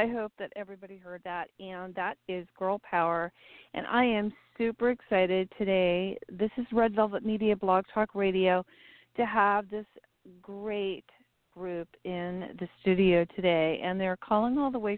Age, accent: 40-59, American